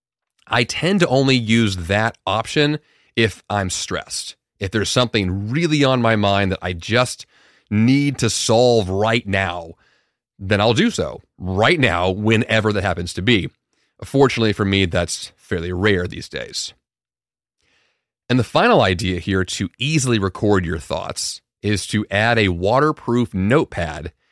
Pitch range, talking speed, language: 95-120 Hz, 150 wpm, English